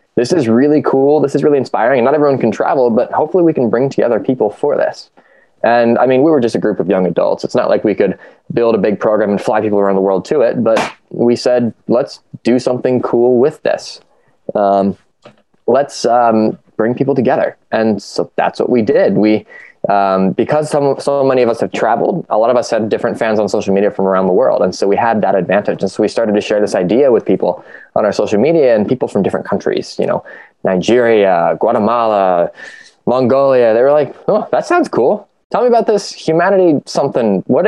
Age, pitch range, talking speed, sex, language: 20-39, 105-135 Hz, 220 wpm, male, English